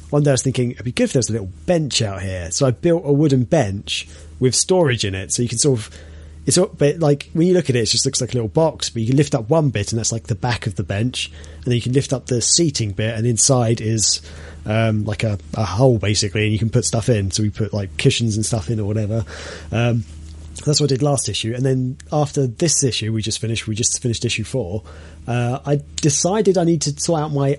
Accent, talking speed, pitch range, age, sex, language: British, 270 wpm, 105-140 Hz, 30-49, male, English